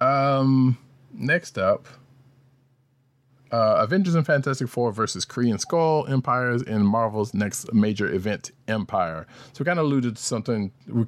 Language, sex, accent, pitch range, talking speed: English, male, American, 100-135 Hz, 145 wpm